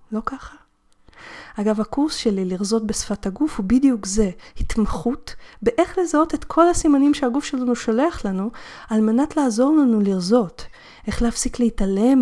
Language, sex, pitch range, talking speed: Hebrew, female, 185-255 Hz, 140 wpm